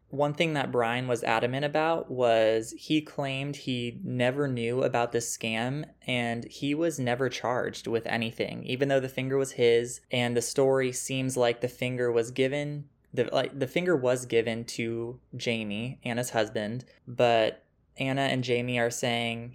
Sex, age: male, 20-39